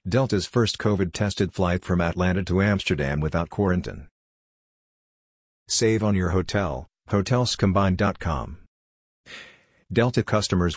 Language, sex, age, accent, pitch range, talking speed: English, male, 50-69, American, 90-105 Hz, 95 wpm